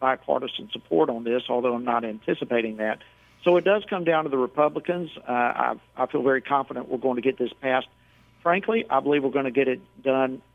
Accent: American